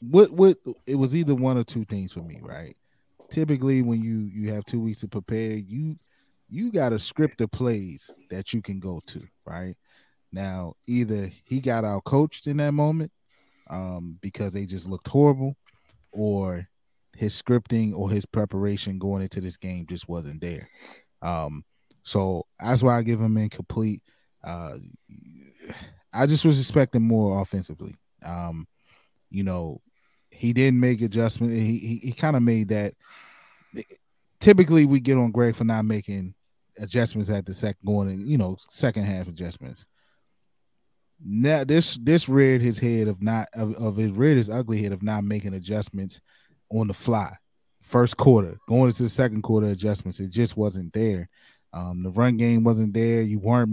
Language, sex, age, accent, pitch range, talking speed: English, male, 20-39, American, 100-125 Hz, 170 wpm